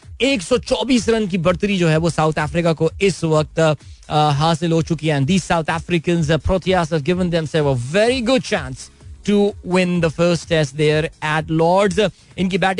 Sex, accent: male, native